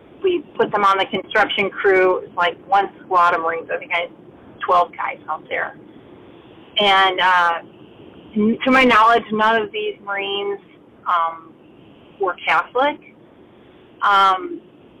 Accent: American